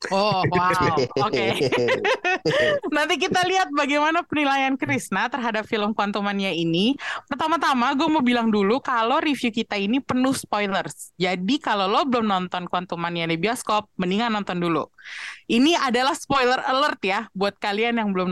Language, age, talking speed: Indonesian, 20-39, 145 wpm